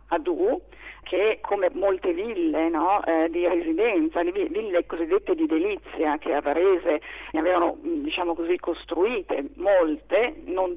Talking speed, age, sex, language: 130 wpm, 50-69, female, Italian